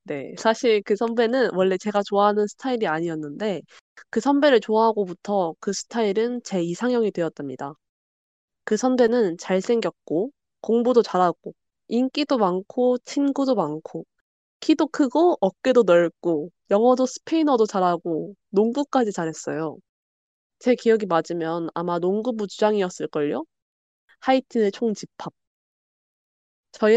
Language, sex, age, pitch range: Korean, female, 20-39, 180-245 Hz